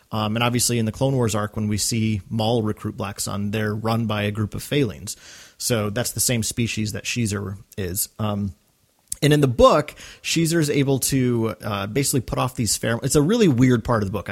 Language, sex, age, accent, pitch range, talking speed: English, male, 30-49, American, 105-135 Hz, 220 wpm